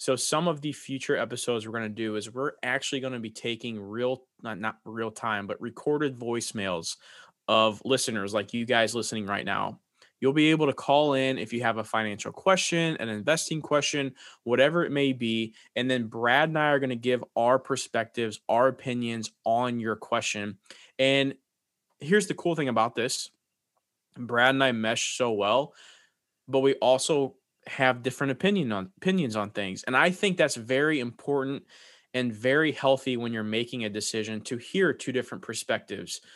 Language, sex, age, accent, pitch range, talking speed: English, male, 20-39, American, 115-140 Hz, 180 wpm